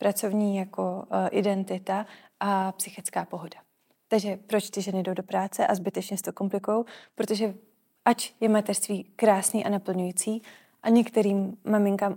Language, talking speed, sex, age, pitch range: Czech, 145 wpm, female, 30-49, 195-220 Hz